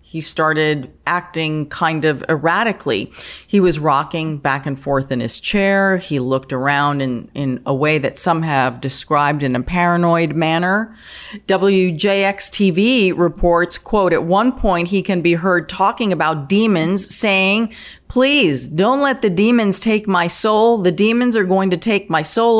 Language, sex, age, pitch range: English, female, 40-59, 160-205 Hz